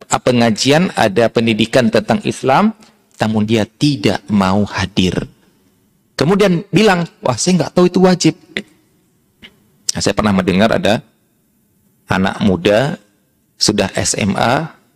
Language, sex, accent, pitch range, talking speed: Indonesian, male, native, 110-185 Hz, 105 wpm